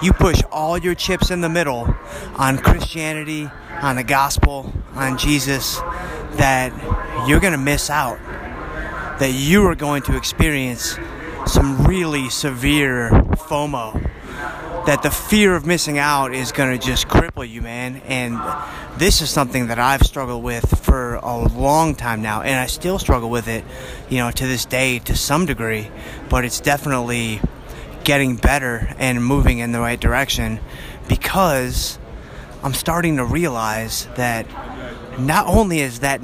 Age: 30-49